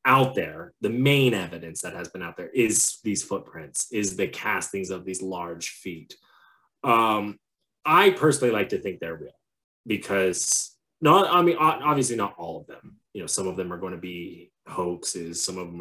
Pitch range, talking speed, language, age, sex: 95-145 Hz, 190 wpm, English, 20-39, male